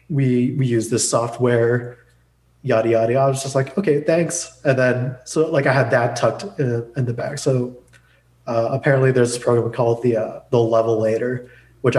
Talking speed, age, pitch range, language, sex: 195 wpm, 20-39, 120-140 Hz, English, male